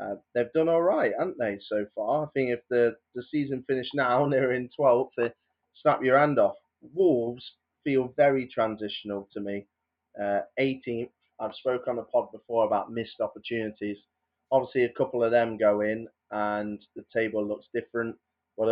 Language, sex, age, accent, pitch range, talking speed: English, male, 20-39, British, 105-125 Hz, 180 wpm